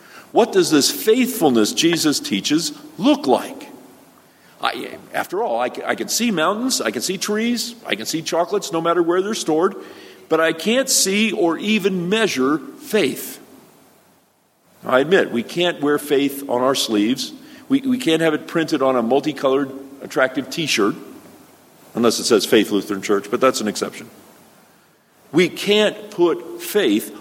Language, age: English, 50-69